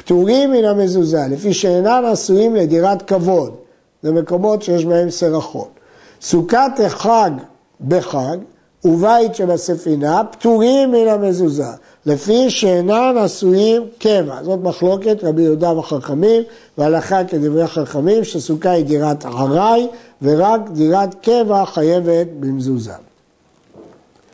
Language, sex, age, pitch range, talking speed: Hebrew, male, 60-79, 160-220 Hz, 100 wpm